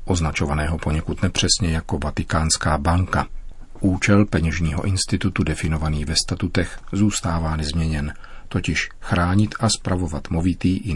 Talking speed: 110 wpm